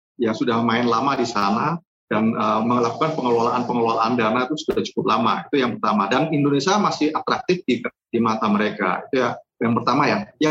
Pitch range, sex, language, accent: 120-165 Hz, male, Indonesian, native